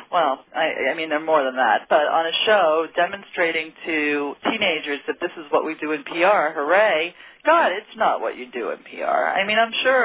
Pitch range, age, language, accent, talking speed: 150-185 Hz, 40-59, English, American, 215 wpm